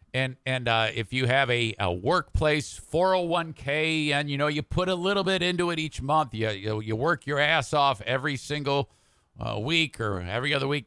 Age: 50-69